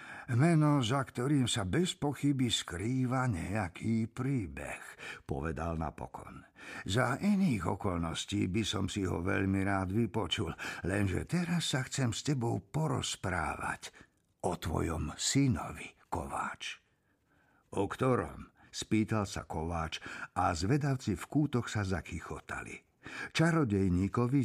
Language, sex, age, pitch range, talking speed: Slovak, male, 50-69, 95-130 Hz, 110 wpm